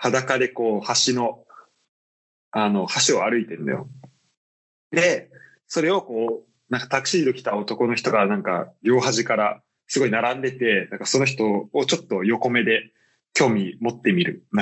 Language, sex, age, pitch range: Japanese, male, 20-39, 110-145 Hz